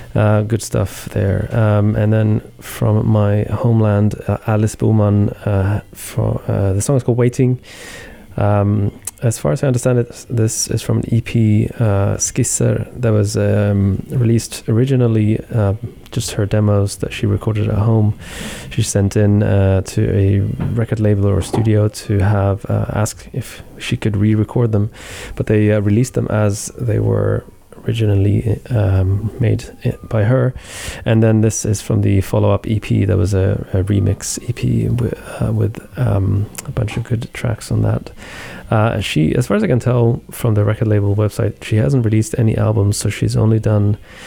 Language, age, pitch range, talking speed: English, 20-39, 100-115 Hz, 175 wpm